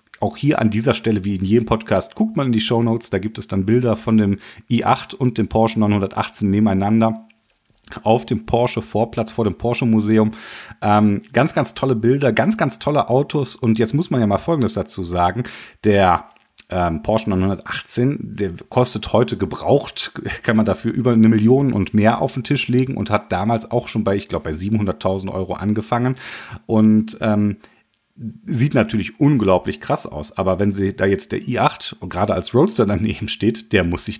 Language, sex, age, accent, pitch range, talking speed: German, male, 40-59, German, 95-115 Hz, 180 wpm